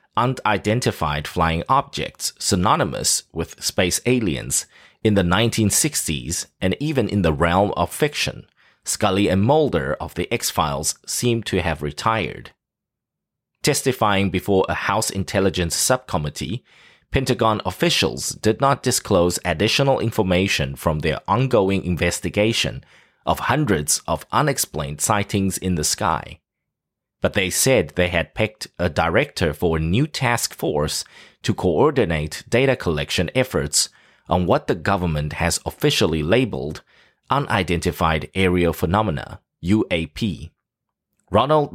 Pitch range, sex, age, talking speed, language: 85-115 Hz, male, 30-49, 120 wpm, English